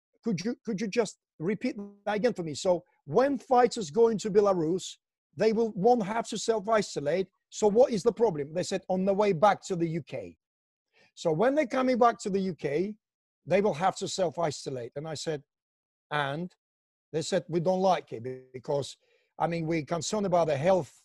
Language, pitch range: English, 175-230 Hz